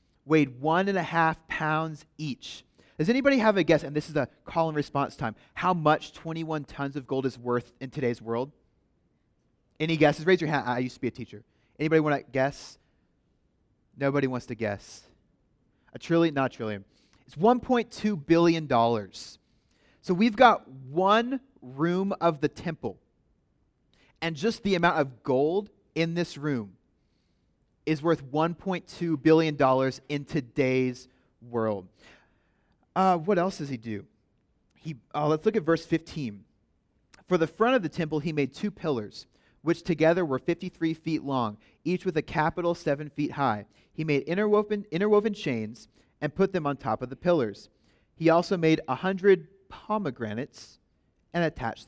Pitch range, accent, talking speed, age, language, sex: 125-170 Hz, American, 160 wpm, 30-49, English, male